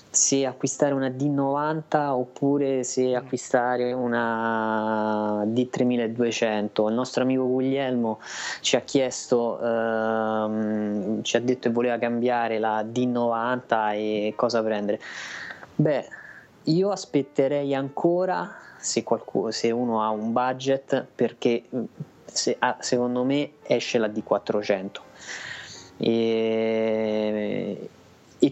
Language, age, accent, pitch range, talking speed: Italian, 20-39, native, 110-130 Hz, 105 wpm